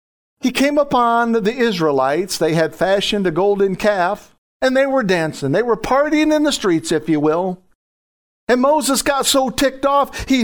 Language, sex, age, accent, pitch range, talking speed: English, male, 50-69, American, 160-240 Hz, 180 wpm